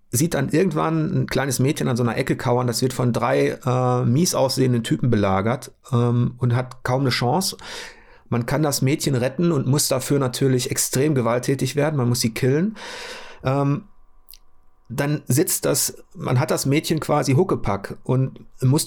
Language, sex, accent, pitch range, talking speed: German, male, German, 115-145 Hz, 170 wpm